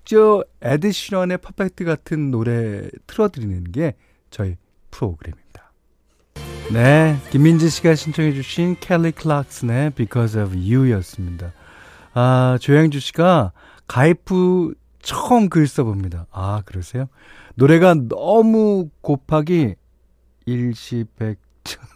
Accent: native